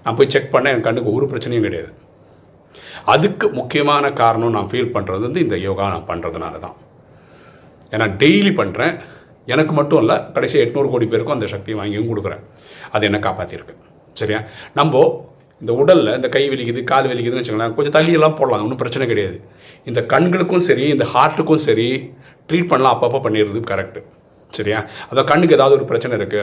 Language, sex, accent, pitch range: Tamil, male, native, 110-165 Hz